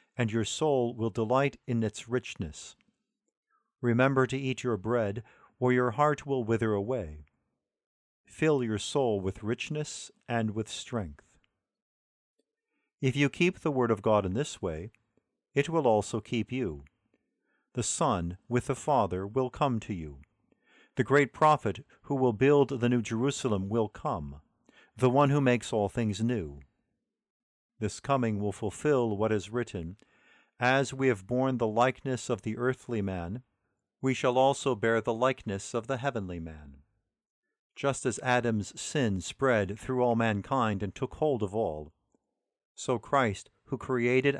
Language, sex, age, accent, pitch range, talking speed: English, male, 50-69, American, 105-130 Hz, 155 wpm